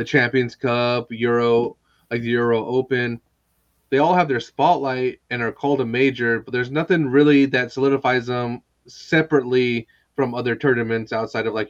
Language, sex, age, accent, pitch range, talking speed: English, male, 30-49, American, 115-140 Hz, 160 wpm